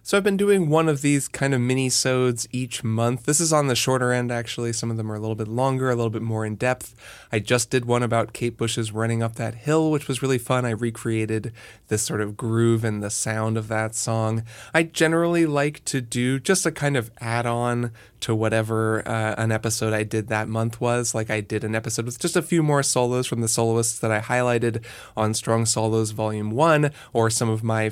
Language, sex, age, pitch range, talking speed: English, male, 20-39, 115-135 Hz, 230 wpm